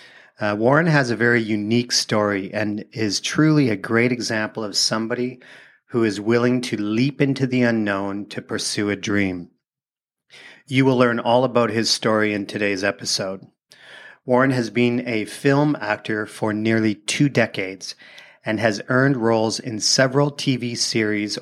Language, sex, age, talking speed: English, male, 40-59, 155 wpm